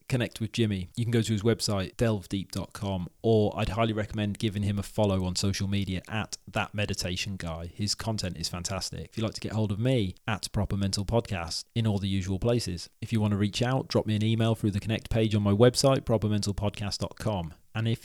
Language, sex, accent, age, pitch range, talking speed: English, male, British, 30-49, 95-115 Hz, 220 wpm